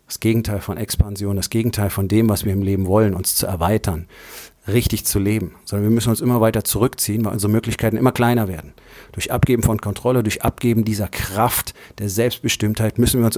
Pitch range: 95-115 Hz